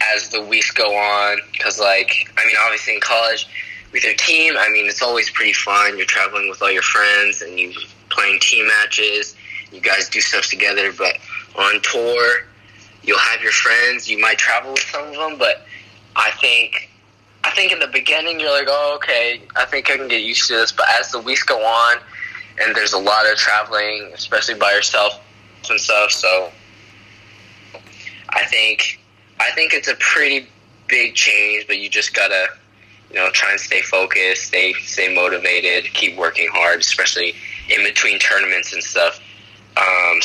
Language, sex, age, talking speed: English, male, 10-29, 180 wpm